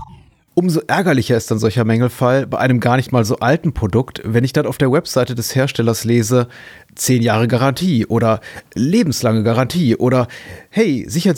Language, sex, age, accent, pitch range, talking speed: German, male, 30-49, German, 115-135 Hz, 170 wpm